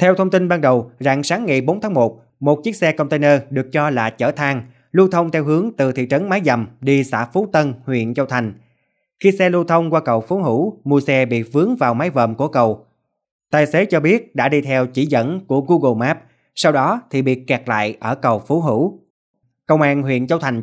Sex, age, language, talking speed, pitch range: male, 20-39, Vietnamese, 235 wpm, 125-160 Hz